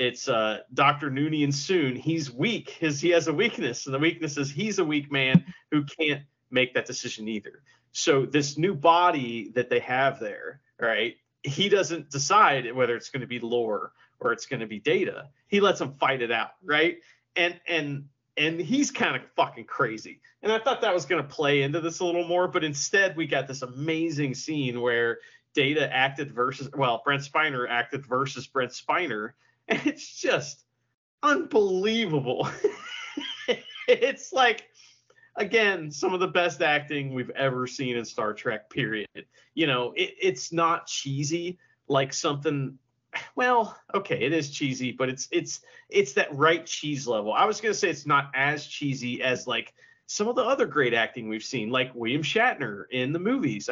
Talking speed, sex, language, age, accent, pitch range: 175 wpm, male, English, 40-59, American, 130-185 Hz